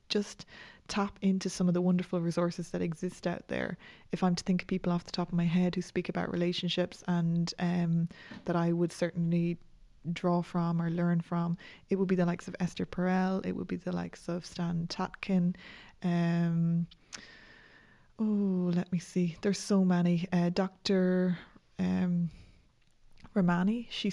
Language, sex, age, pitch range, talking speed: English, female, 20-39, 175-190 Hz, 165 wpm